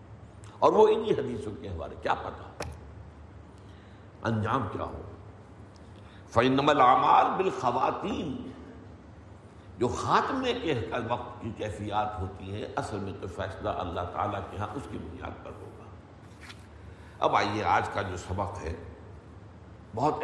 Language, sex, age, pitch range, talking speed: Urdu, male, 60-79, 95-115 Hz, 115 wpm